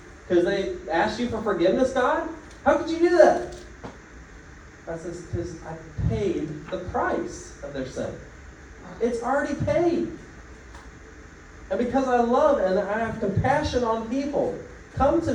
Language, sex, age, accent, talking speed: English, male, 30-49, American, 145 wpm